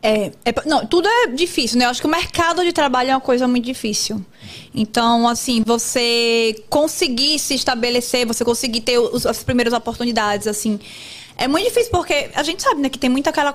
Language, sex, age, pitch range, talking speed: Portuguese, female, 20-39, 235-295 Hz, 200 wpm